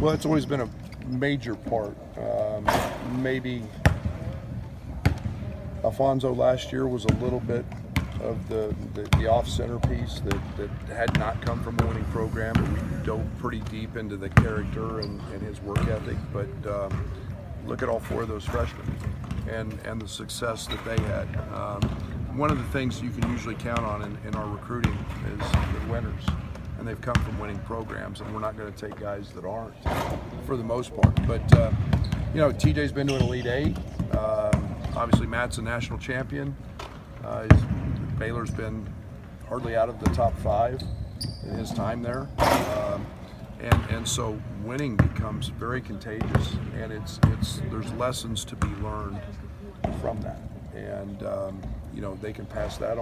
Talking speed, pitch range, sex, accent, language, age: 170 wpm, 100-120 Hz, male, American, English, 50-69